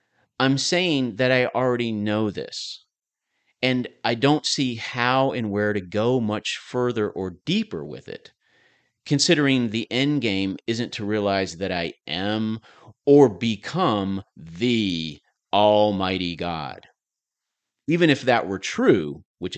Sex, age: male, 40-59